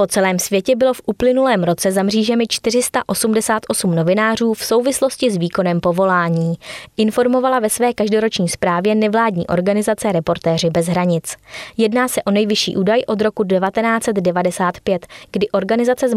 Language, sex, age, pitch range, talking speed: Czech, female, 20-39, 180-230 Hz, 135 wpm